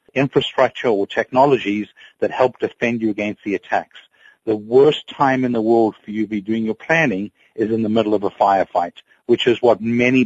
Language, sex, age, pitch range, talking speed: English, male, 50-69, 105-130 Hz, 200 wpm